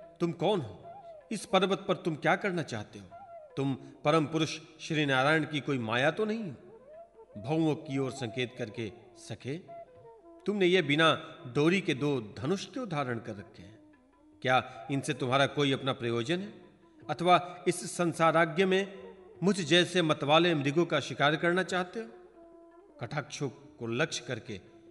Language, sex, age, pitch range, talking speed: Hindi, male, 40-59, 140-195 Hz, 150 wpm